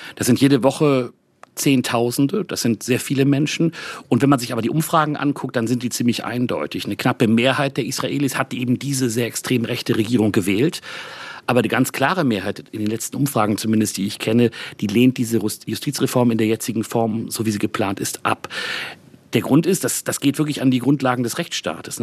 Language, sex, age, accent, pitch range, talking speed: German, male, 40-59, German, 115-140 Hz, 205 wpm